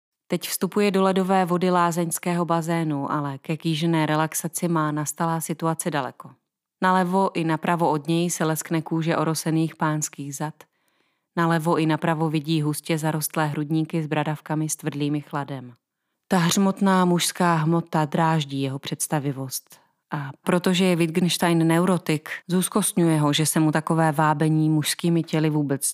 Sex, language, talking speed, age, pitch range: female, Czech, 140 wpm, 30-49, 160-185 Hz